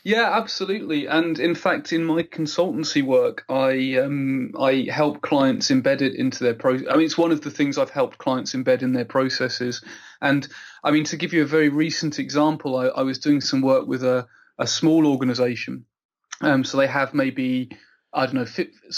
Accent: British